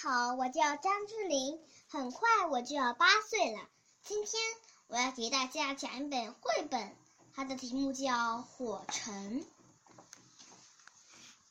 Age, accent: 10-29, native